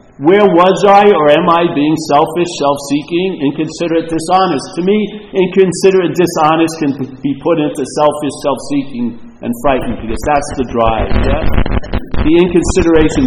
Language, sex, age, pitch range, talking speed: English, male, 50-69, 145-195 Hz, 150 wpm